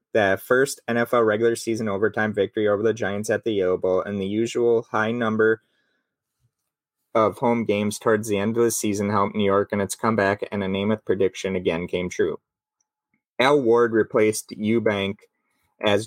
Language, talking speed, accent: English, 170 wpm, American